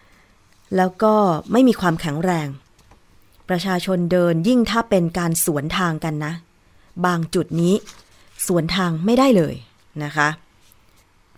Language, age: Thai, 20-39